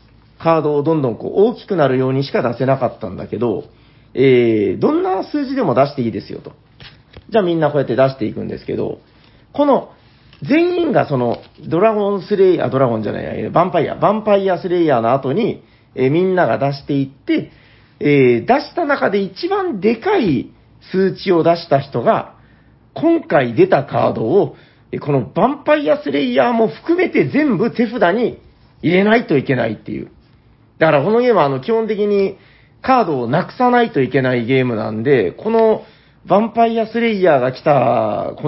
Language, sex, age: Japanese, male, 40-59